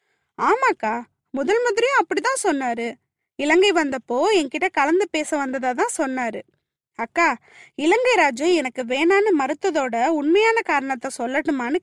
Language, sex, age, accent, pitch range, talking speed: Tamil, female, 20-39, native, 270-375 Hz, 105 wpm